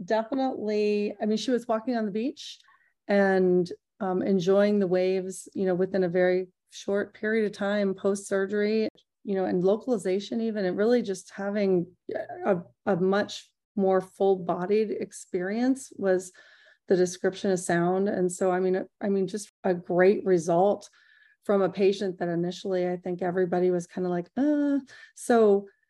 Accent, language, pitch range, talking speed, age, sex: American, English, 180-205 Hz, 155 wpm, 30-49, female